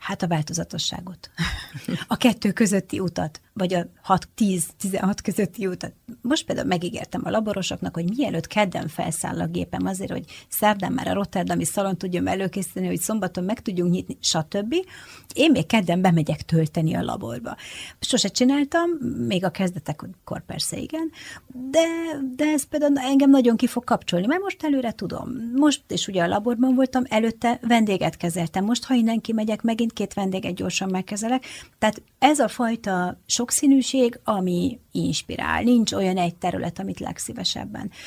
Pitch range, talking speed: 175-240 Hz, 150 wpm